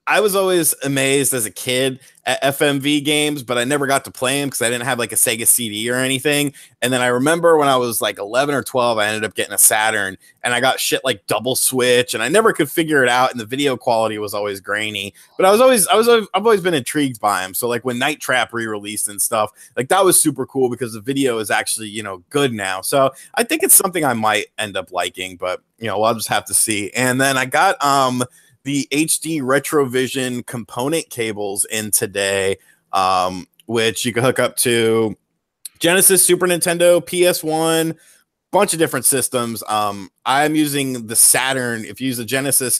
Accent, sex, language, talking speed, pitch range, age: American, male, English, 215 wpm, 105-145 Hz, 30-49